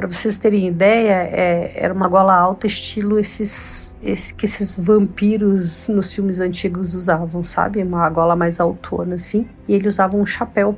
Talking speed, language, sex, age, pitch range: 165 wpm, Portuguese, female, 50-69, 175-215 Hz